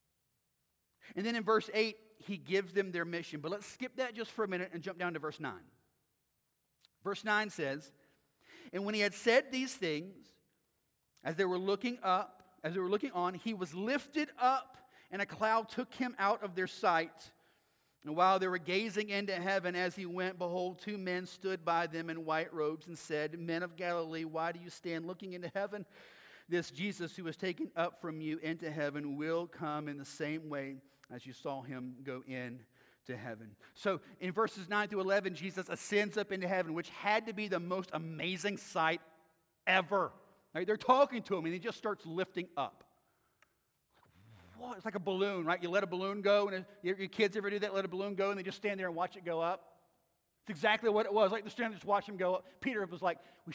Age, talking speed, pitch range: 40-59, 215 wpm, 165-205 Hz